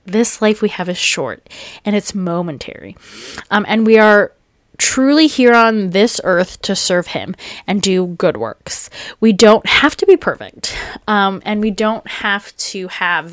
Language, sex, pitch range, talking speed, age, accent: English, female, 180-235 Hz, 170 wpm, 20-39, American